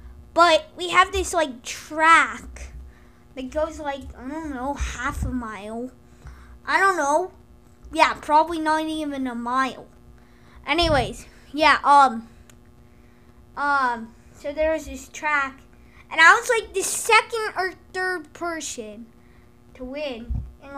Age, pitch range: 20-39, 245-315 Hz